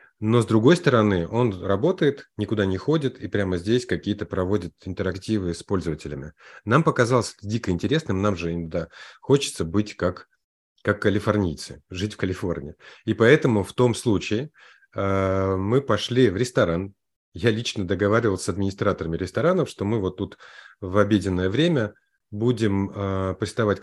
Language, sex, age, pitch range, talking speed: Russian, male, 30-49, 90-110 Hz, 145 wpm